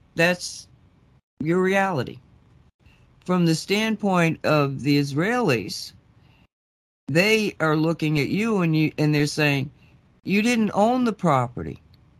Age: 60-79